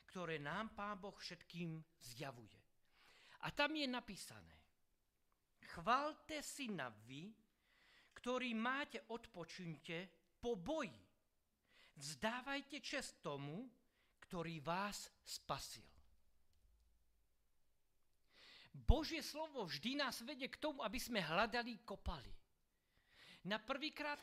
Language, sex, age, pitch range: Slovak, male, 50-69, 155-255 Hz